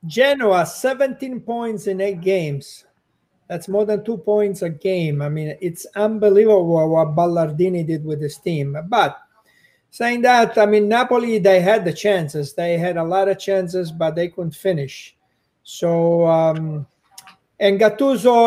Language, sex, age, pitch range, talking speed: English, male, 50-69, 170-210 Hz, 155 wpm